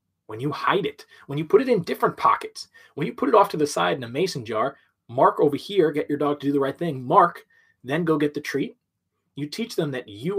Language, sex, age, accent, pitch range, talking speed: English, male, 20-39, American, 120-170 Hz, 260 wpm